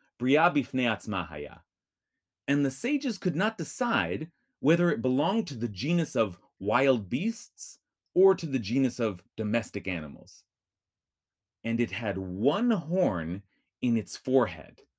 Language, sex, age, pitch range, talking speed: English, male, 30-49, 95-160 Hz, 120 wpm